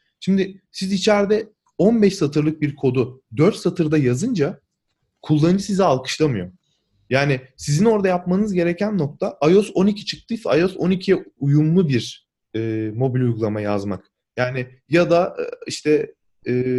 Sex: male